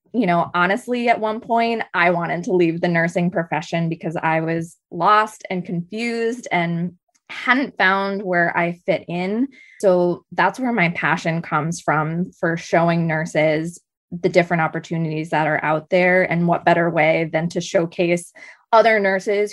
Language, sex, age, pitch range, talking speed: English, female, 20-39, 165-195 Hz, 160 wpm